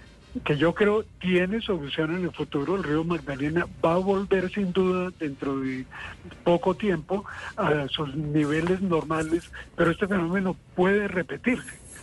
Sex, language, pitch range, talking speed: male, Spanish, 160-195 Hz, 145 wpm